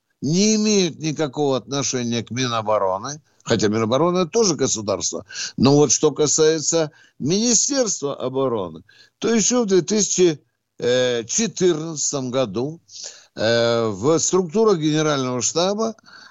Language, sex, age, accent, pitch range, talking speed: Russian, male, 60-79, native, 135-195 Hz, 90 wpm